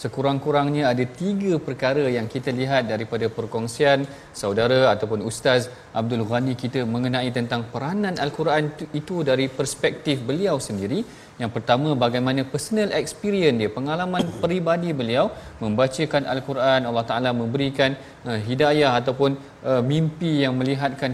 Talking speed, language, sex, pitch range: 125 wpm, Malayalam, male, 130-170 Hz